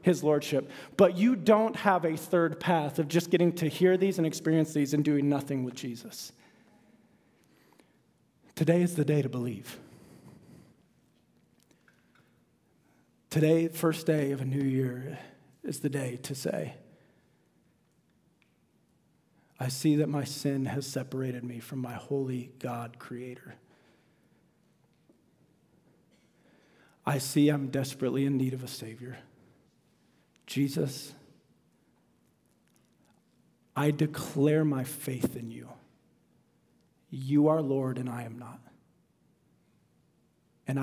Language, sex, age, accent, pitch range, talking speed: English, male, 40-59, American, 125-150 Hz, 115 wpm